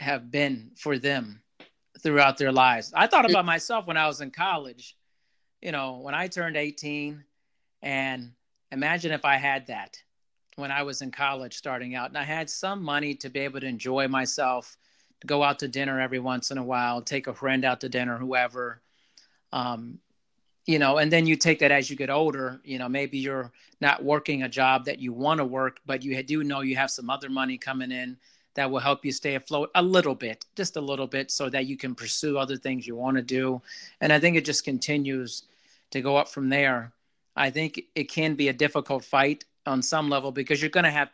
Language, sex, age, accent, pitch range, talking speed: English, male, 40-59, American, 130-145 Hz, 215 wpm